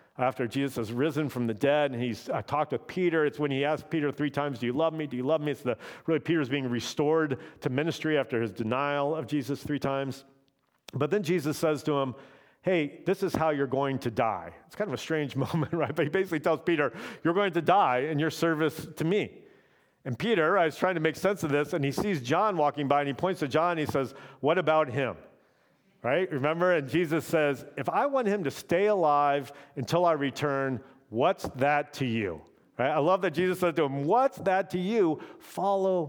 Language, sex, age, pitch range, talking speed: English, male, 50-69, 135-170 Hz, 230 wpm